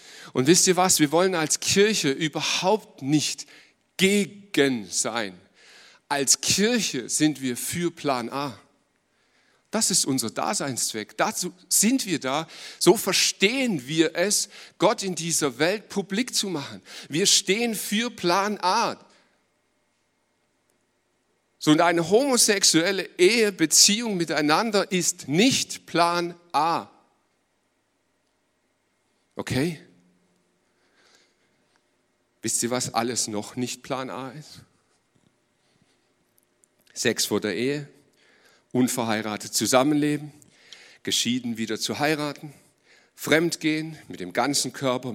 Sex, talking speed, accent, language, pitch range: male, 100 wpm, German, German, 125-175 Hz